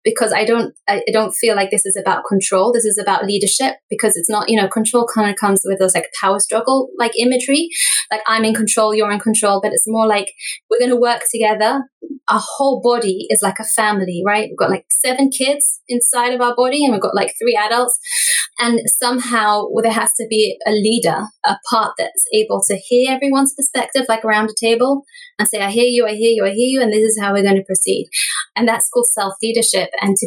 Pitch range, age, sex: 200-245 Hz, 20-39, female